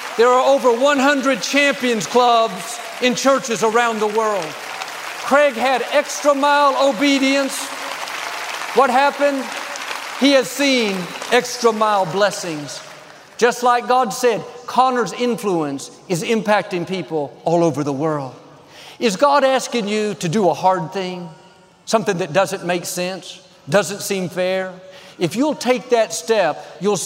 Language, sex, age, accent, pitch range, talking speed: English, male, 50-69, American, 175-235 Hz, 135 wpm